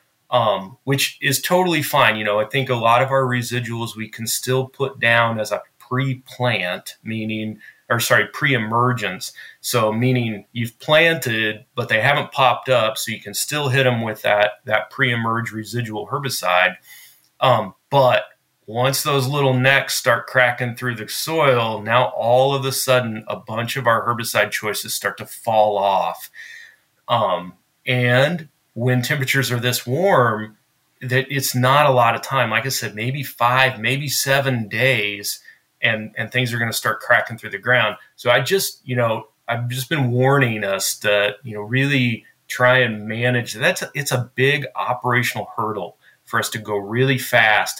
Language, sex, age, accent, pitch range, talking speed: English, male, 30-49, American, 110-130 Hz, 175 wpm